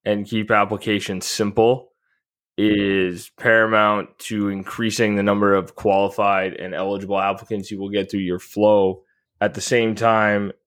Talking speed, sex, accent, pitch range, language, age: 140 wpm, male, American, 100-110 Hz, English, 20-39